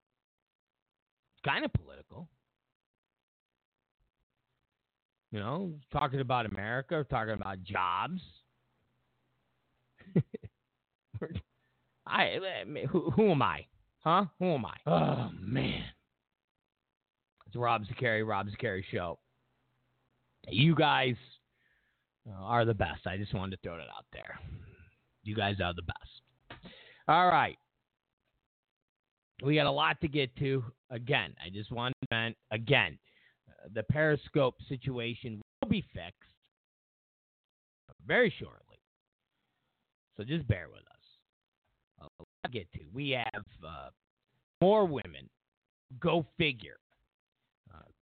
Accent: American